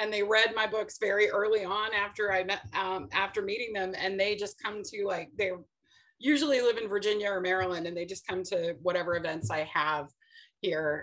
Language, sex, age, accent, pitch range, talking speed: English, female, 30-49, American, 180-265 Hz, 205 wpm